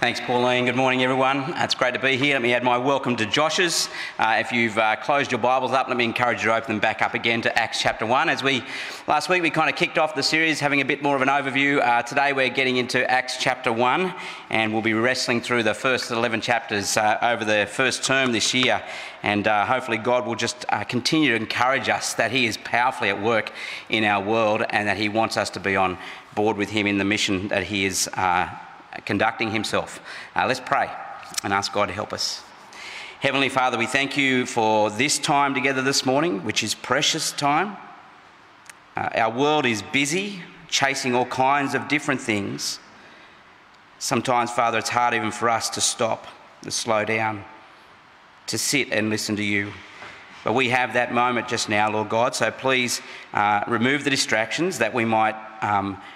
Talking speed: 205 wpm